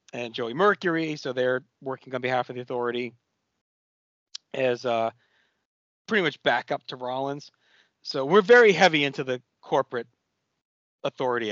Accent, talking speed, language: American, 140 wpm, English